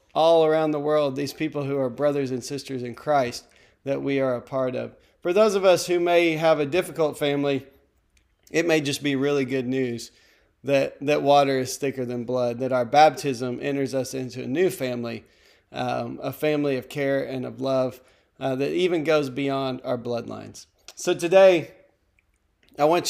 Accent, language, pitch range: American, English, 135-170 Hz